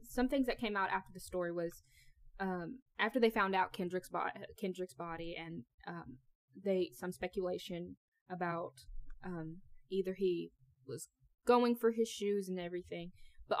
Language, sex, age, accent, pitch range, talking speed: English, female, 10-29, American, 170-210 Hz, 155 wpm